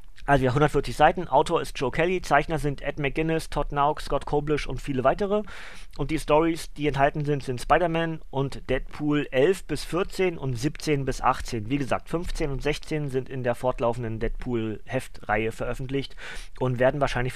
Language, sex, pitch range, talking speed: German, male, 120-150 Hz, 175 wpm